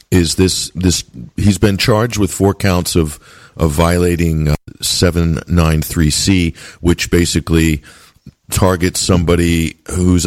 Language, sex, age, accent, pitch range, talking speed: English, male, 50-69, American, 80-95 Hz, 125 wpm